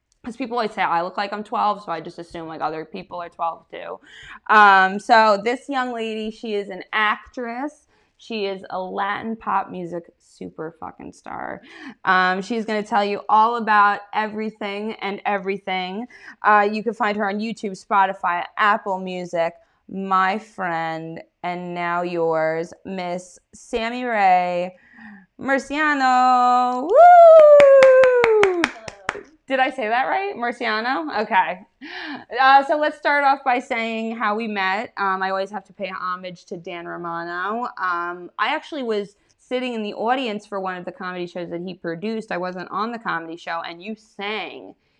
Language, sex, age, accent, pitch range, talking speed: English, female, 20-39, American, 180-235 Hz, 160 wpm